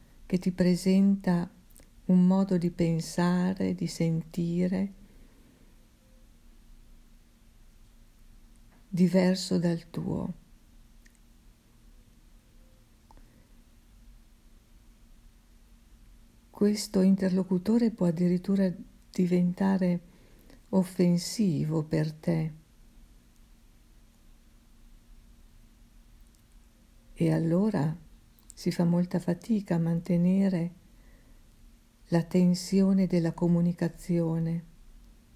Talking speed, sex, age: 55 wpm, female, 50-69